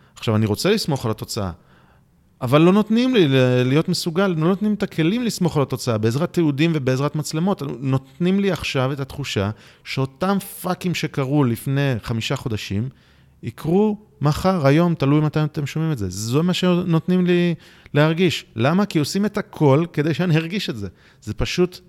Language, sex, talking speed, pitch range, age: Hebrew, male, 165 wpm, 100-150 Hz, 30-49